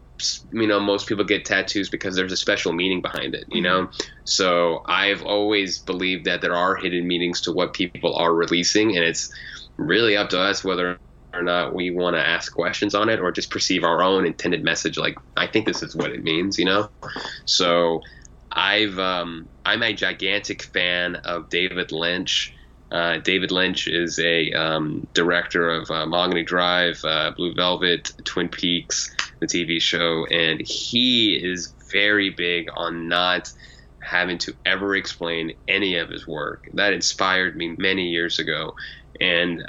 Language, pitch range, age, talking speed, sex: English, 85-95 Hz, 20-39, 170 wpm, male